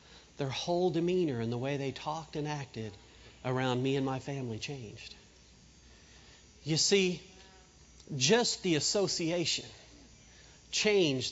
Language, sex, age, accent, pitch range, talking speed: English, male, 40-59, American, 125-205 Hz, 115 wpm